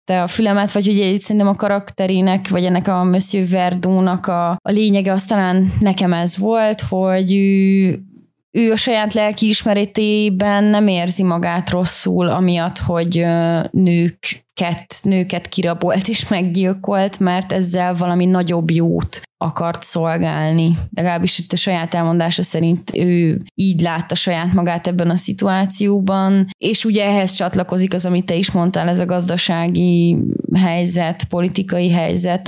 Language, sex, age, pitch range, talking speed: Hungarian, female, 20-39, 175-195 Hz, 135 wpm